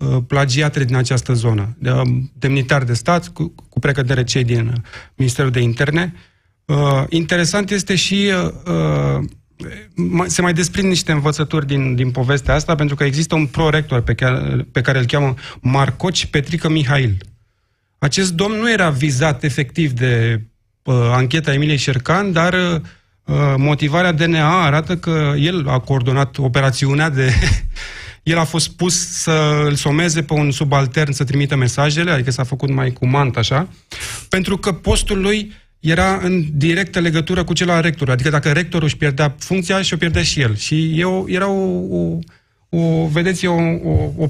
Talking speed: 160 wpm